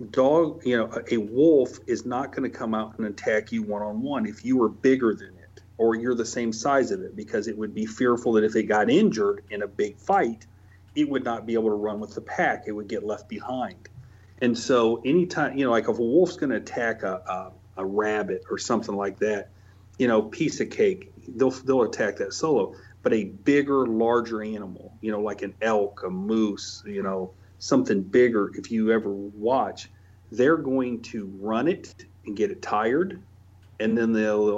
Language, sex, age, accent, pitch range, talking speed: English, male, 40-59, American, 100-120 Hz, 205 wpm